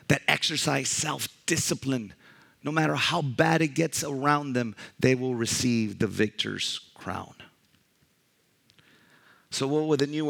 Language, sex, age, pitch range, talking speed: English, male, 40-59, 120-150 Hz, 130 wpm